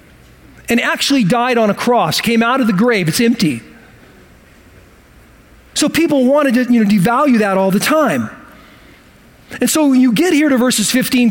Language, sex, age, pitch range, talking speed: English, male, 40-59, 190-250 Hz, 165 wpm